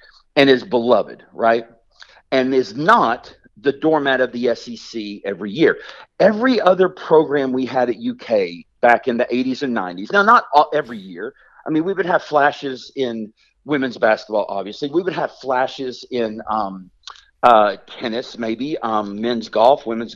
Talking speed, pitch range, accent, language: 165 wpm, 130-205 Hz, American, English